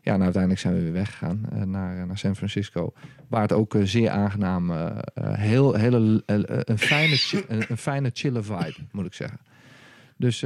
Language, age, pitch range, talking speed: Dutch, 40-59, 100-120 Hz, 180 wpm